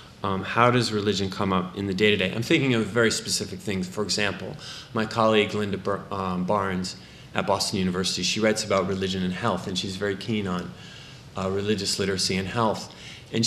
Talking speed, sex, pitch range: 190 wpm, male, 100-125 Hz